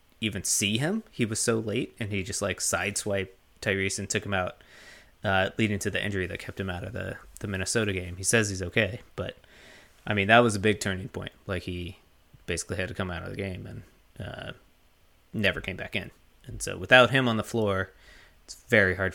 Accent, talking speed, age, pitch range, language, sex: American, 220 wpm, 20-39, 90-110 Hz, English, male